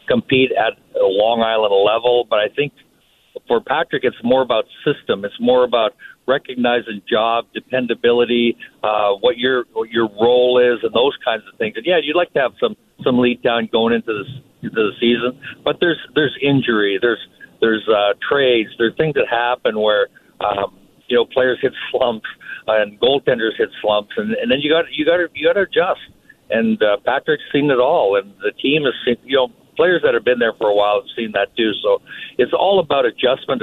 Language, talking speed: English, 205 wpm